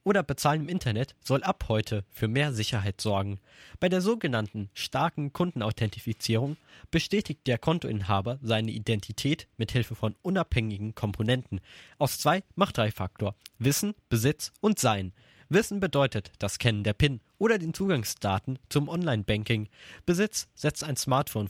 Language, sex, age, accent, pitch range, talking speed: German, male, 20-39, German, 110-150 Hz, 140 wpm